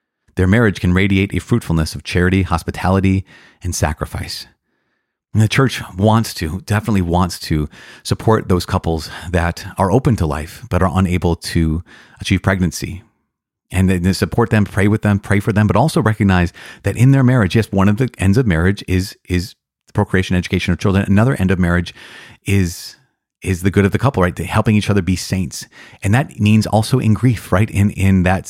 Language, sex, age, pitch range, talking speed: English, male, 30-49, 90-105 Hz, 185 wpm